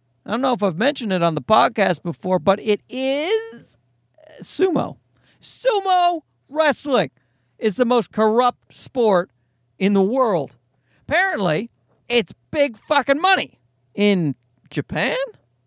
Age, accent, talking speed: 40-59, American, 125 wpm